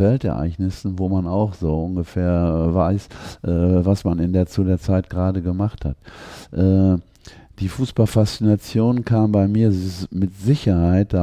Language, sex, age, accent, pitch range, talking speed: German, male, 50-69, German, 80-100 Hz, 135 wpm